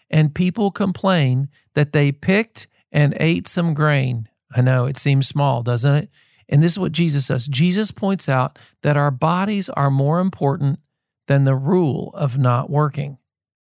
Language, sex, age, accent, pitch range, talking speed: English, male, 50-69, American, 135-180 Hz, 165 wpm